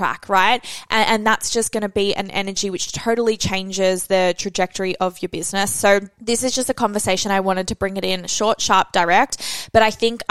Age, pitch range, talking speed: 20-39, 190-230 Hz, 215 wpm